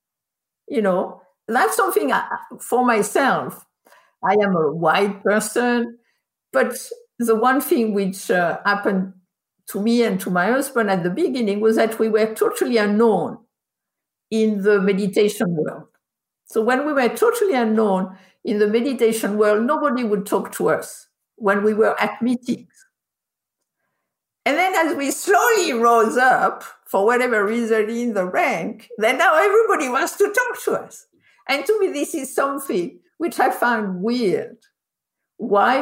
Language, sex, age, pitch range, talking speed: English, female, 60-79, 210-315 Hz, 150 wpm